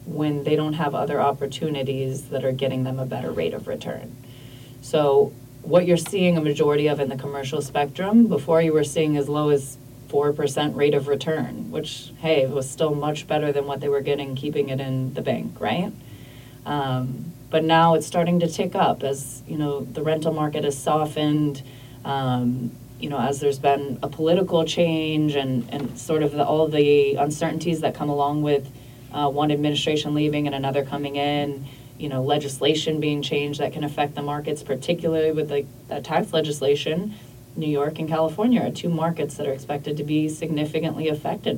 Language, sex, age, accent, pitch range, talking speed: English, female, 20-39, American, 135-155 Hz, 185 wpm